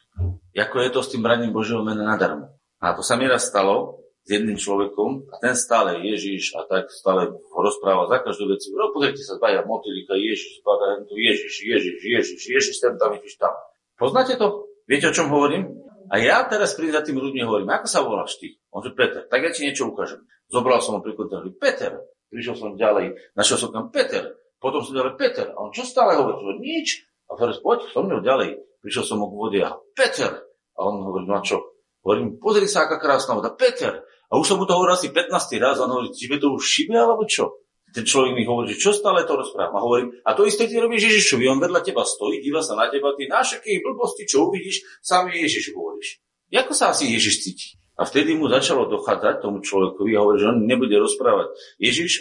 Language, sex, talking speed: Slovak, male, 210 wpm